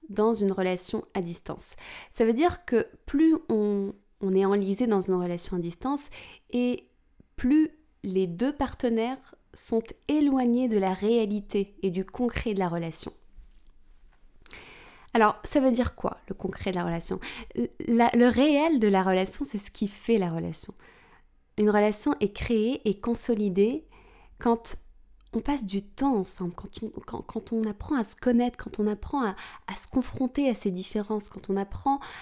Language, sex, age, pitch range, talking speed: French, female, 20-39, 190-255 Hz, 170 wpm